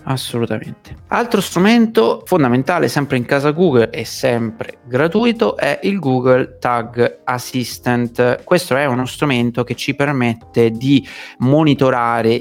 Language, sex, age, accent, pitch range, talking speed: Italian, male, 30-49, native, 110-135 Hz, 120 wpm